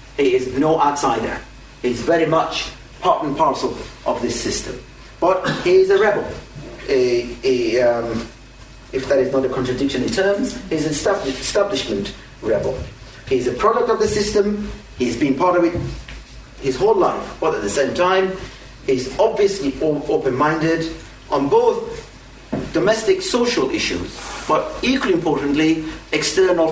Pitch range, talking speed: 135-205 Hz, 150 wpm